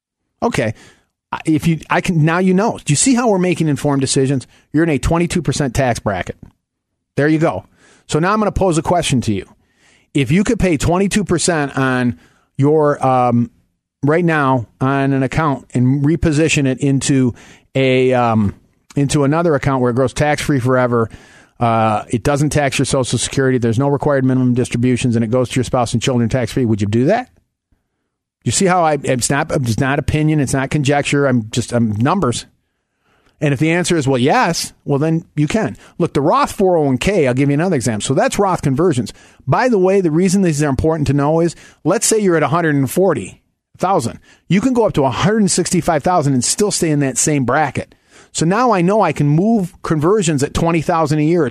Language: English